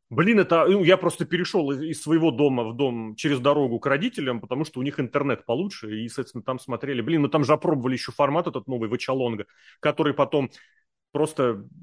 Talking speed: 195 wpm